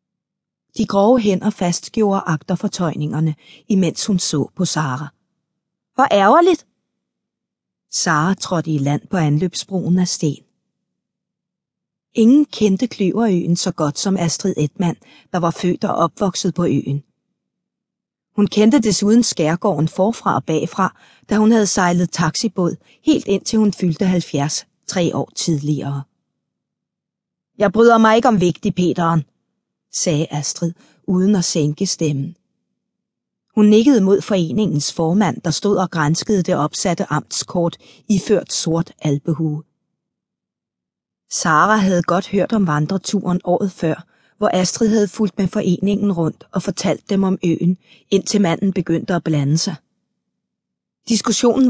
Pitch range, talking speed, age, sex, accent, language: 165-205 Hz, 130 wpm, 30-49, female, native, Danish